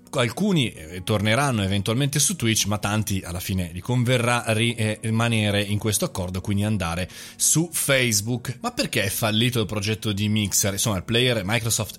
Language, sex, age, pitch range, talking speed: Italian, male, 30-49, 100-135 Hz, 160 wpm